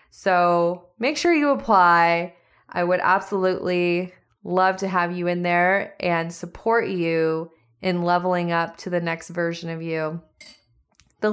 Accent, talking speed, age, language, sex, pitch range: American, 145 wpm, 20-39, English, female, 175-220 Hz